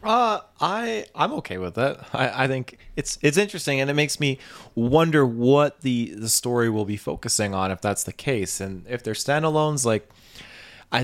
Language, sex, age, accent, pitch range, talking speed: English, male, 20-39, American, 95-120 Hz, 190 wpm